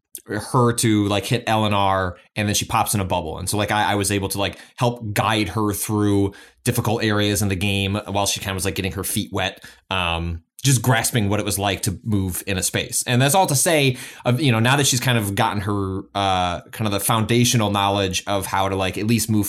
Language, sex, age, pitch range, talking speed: English, male, 20-39, 100-130 Hz, 255 wpm